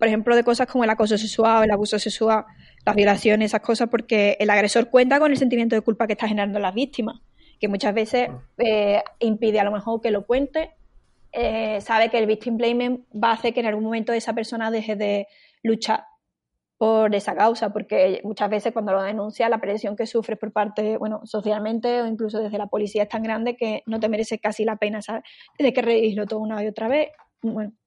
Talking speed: 215 wpm